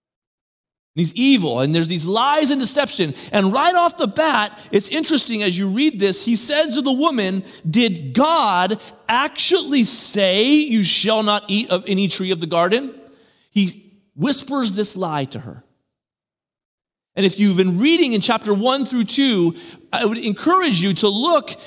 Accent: American